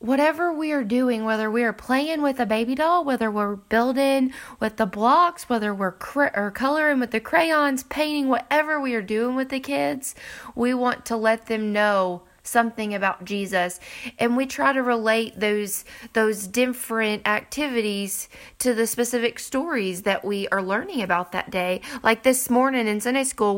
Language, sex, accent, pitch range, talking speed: English, female, American, 200-245 Hz, 175 wpm